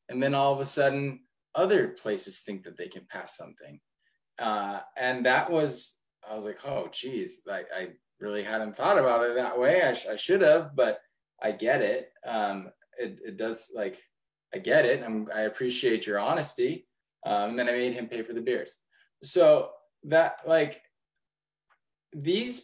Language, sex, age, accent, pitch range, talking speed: English, male, 20-39, American, 110-150 Hz, 180 wpm